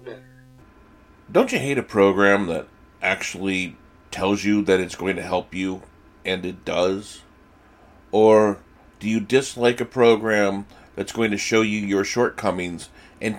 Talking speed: 145 wpm